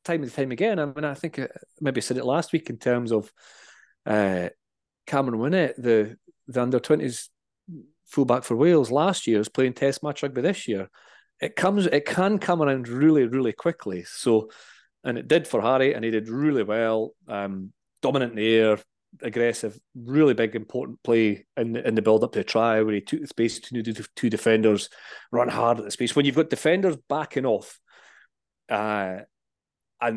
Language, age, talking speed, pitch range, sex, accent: English, 30-49, 190 wpm, 110-130 Hz, male, British